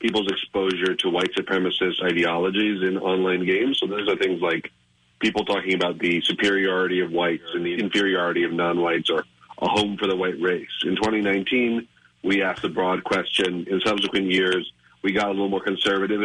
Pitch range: 85-100 Hz